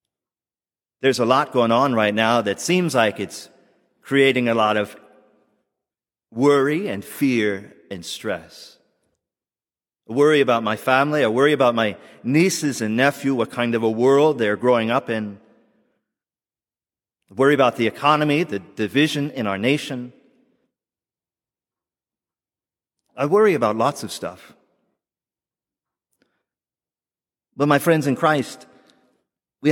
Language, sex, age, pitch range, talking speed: English, male, 40-59, 115-155 Hz, 125 wpm